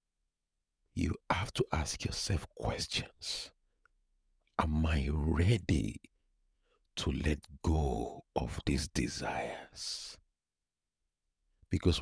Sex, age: male, 60-79